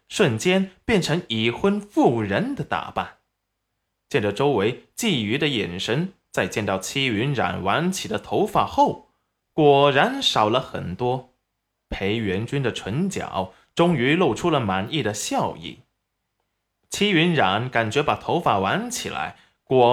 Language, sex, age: Chinese, male, 20-39